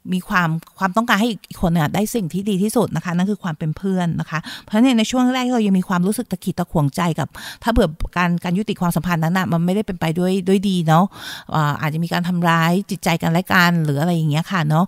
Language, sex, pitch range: Thai, female, 160-205 Hz